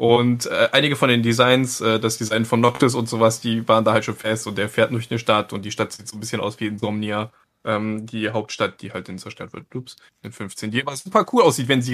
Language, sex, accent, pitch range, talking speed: German, male, German, 115-150 Hz, 265 wpm